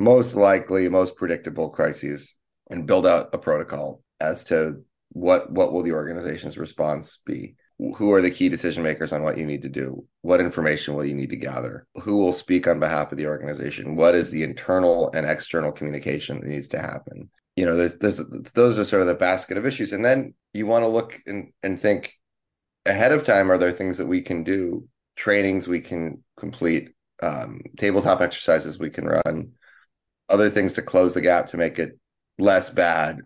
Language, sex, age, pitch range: English, male, 30-49, 80-100 Hz